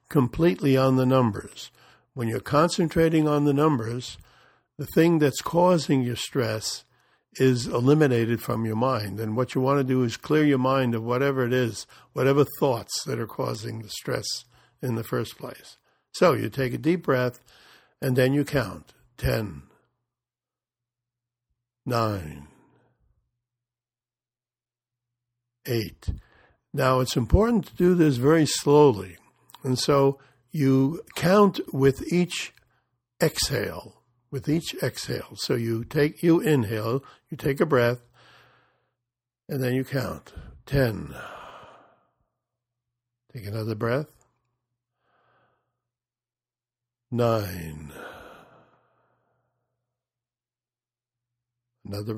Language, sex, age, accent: English, male, 60-79, American